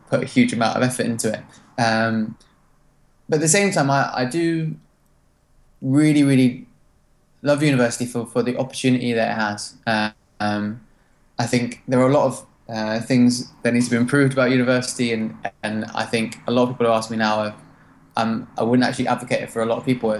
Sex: male